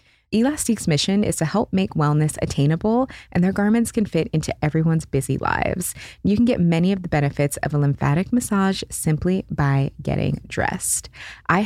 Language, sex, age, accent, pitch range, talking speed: English, female, 20-39, American, 145-185 Hz, 170 wpm